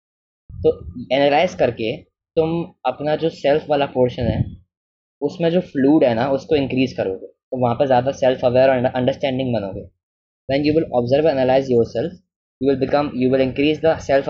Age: 20-39